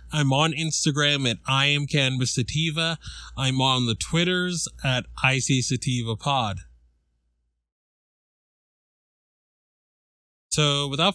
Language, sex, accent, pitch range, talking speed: English, male, American, 110-140 Hz, 95 wpm